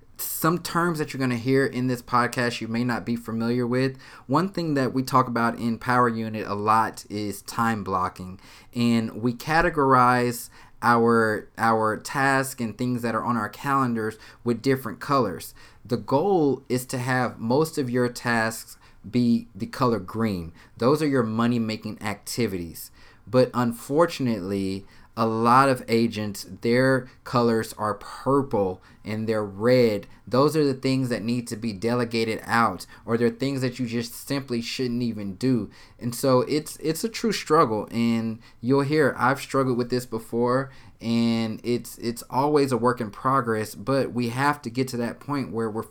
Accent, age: American, 20-39